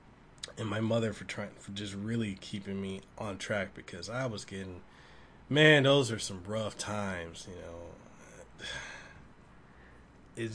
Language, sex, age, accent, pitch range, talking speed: English, male, 20-39, American, 100-120 Hz, 140 wpm